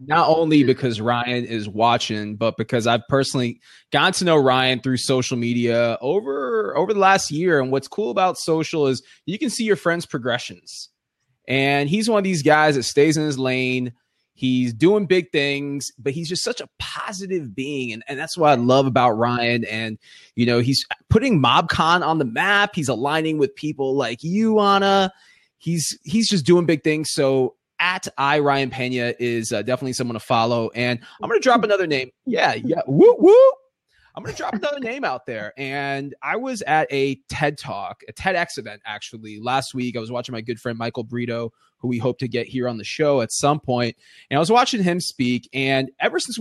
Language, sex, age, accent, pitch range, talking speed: English, male, 20-39, American, 125-175 Hz, 205 wpm